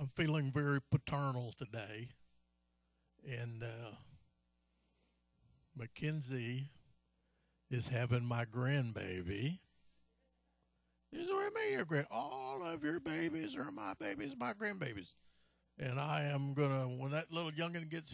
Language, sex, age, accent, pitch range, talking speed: English, male, 50-69, American, 105-145 Hz, 120 wpm